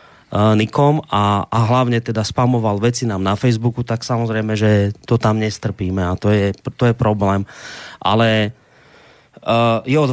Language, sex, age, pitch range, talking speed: Slovak, male, 30-49, 110-125 Hz, 135 wpm